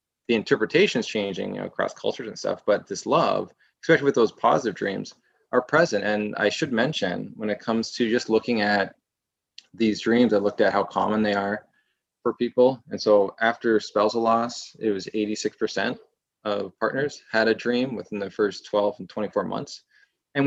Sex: male